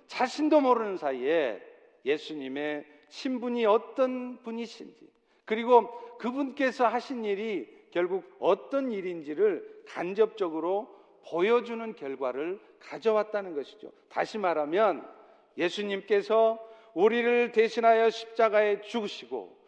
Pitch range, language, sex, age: 195-275 Hz, Korean, male, 50-69